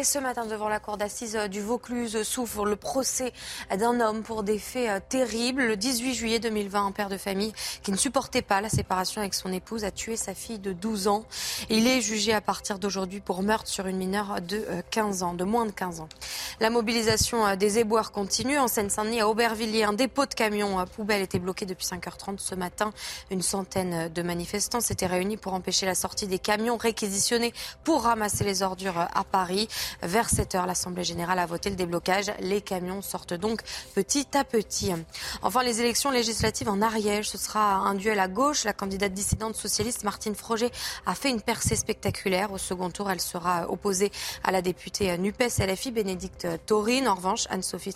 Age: 20-39